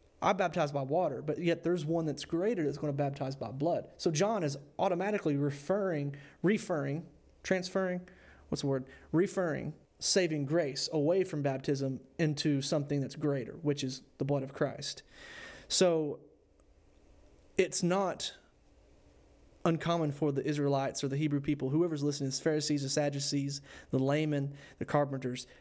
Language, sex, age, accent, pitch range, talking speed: English, male, 30-49, American, 135-155 Hz, 150 wpm